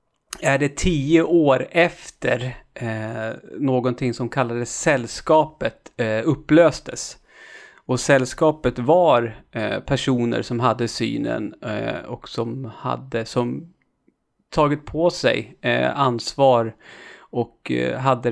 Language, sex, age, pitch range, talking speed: Swedish, male, 30-49, 115-140 Hz, 90 wpm